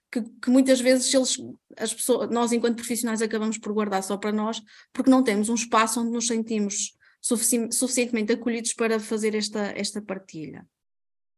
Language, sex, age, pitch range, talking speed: Portuguese, female, 20-39, 210-245 Hz, 150 wpm